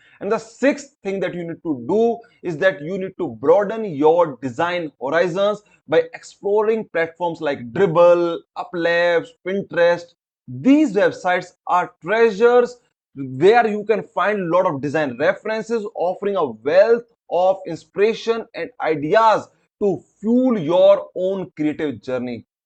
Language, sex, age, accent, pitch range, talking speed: English, male, 20-39, Indian, 160-230 Hz, 135 wpm